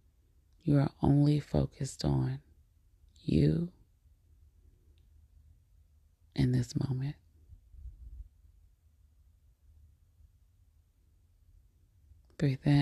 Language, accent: English, American